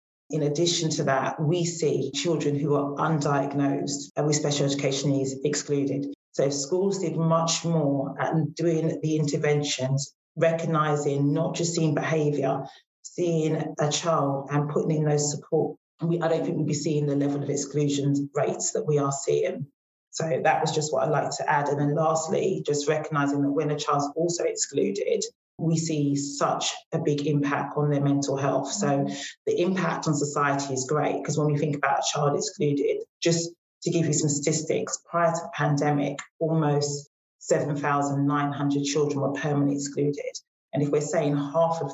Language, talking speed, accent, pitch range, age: English, 175 wpm, British, 140-160 Hz, 40-59